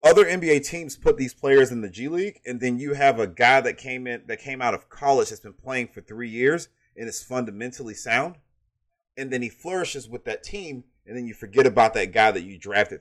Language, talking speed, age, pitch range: English, 235 wpm, 30-49, 105-140 Hz